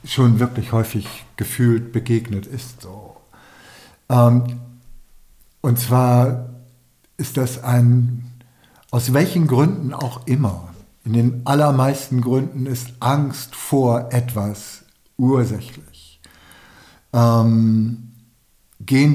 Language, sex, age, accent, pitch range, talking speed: German, male, 60-79, German, 115-140 Hz, 90 wpm